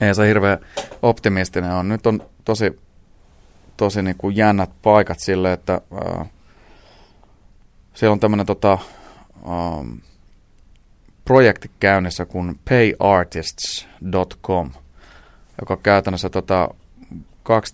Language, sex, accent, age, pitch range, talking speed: Finnish, male, native, 30-49, 85-100 Hz, 100 wpm